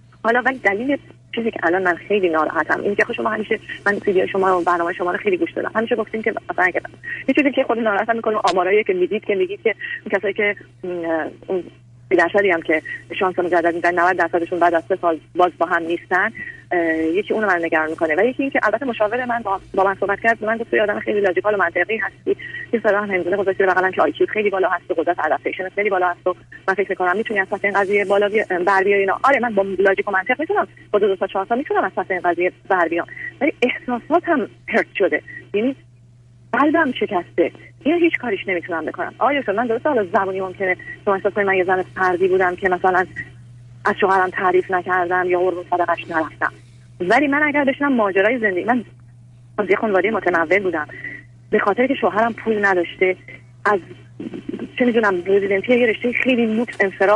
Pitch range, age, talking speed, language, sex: 175-225 Hz, 30-49, 185 wpm, Persian, female